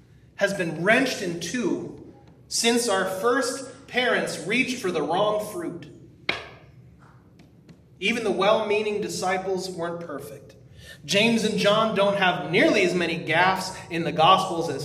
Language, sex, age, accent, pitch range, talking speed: English, male, 30-49, American, 155-215 Hz, 135 wpm